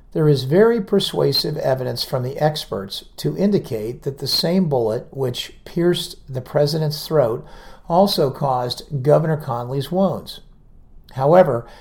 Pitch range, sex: 125-165 Hz, male